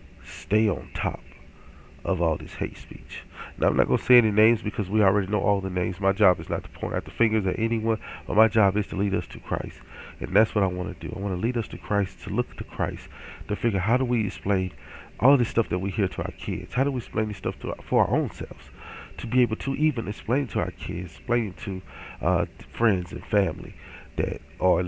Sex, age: male, 40-59